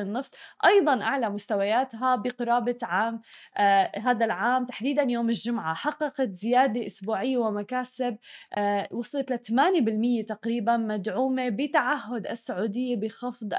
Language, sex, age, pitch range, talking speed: Arabic, female, 20-39, 220-265 Hz, 110 wpm